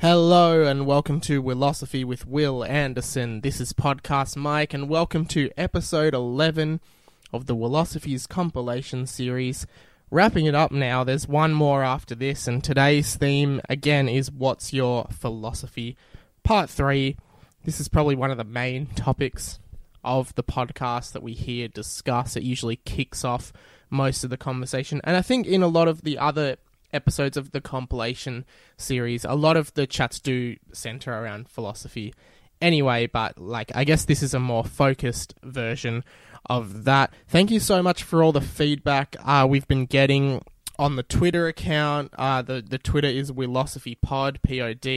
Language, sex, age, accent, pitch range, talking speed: English, male, 20-39, Australian, 125-145 Hz, 165 wpm